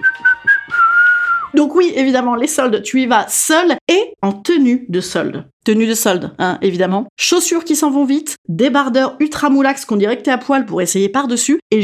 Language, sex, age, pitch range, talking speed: French, female, 30-49, 215-330 Hz, 190 wpm